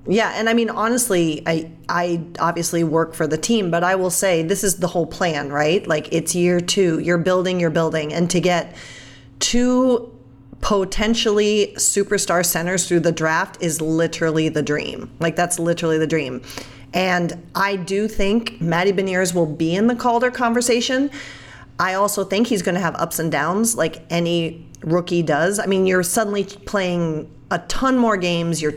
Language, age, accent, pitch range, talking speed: English, 40-59, American, 155-190 Hz, 175 wpm